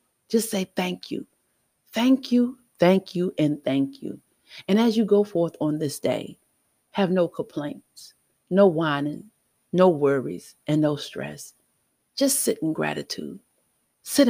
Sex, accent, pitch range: female, American, 150-200 Hz